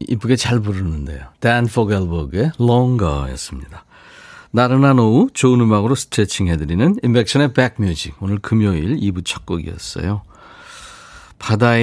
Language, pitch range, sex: Korean, 95-140 Hz, male